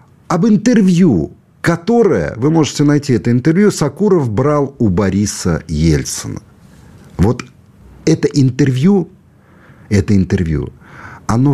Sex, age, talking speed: male, 50-69, 100 wpm